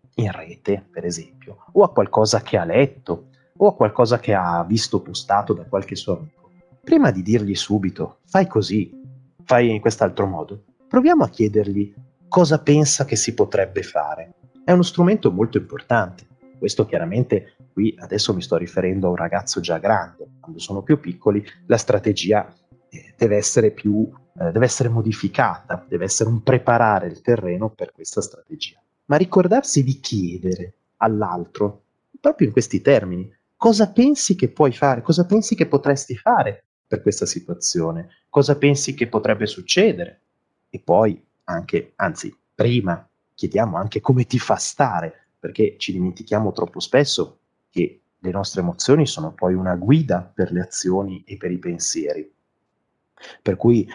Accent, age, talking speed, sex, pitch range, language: native, 30-49, 155 wpm, male, 95-140 Hz, Italian